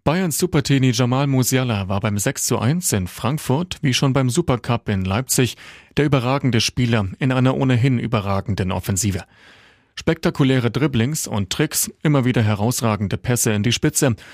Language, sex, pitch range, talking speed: German, male, 105-140 Hz, 150 wpm